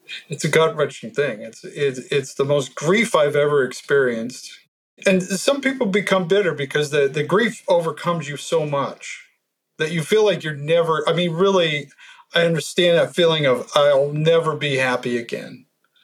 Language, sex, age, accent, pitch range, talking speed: English, male, 50-69, American, 140-180 Hz, 170 wpm